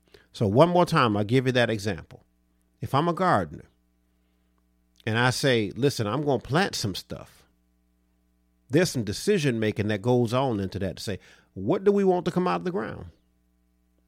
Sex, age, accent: male, 50-69, American